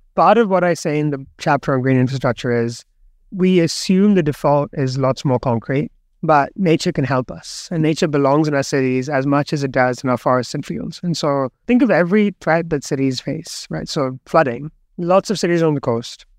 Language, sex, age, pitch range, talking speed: English, male, 30-49, 135-175 Hz, 215 wpm